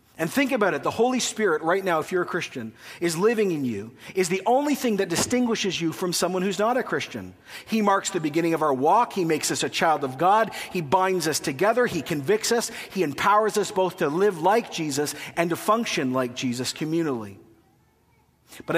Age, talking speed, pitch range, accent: 40-59, 210 wpm, 145-205 Hz, American